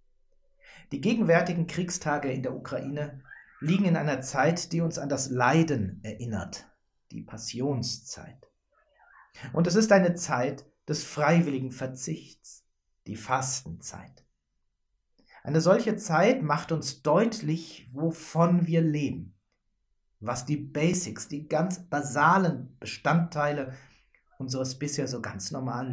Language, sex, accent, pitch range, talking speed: German, male, German, 125-170 Hz, 115 wpm